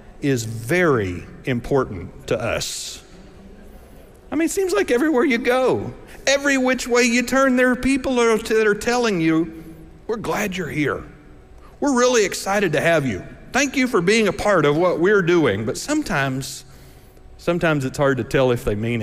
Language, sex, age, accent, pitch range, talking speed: English, male, 50-69, American, 155-230 Hz, 175 wpm